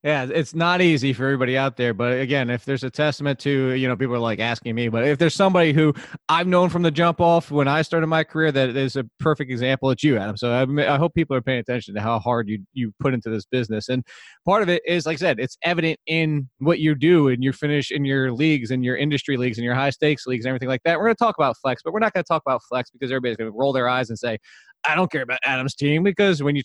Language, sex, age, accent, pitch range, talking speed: English, male, 20-39, American, 130-165 Hz, 290 wpm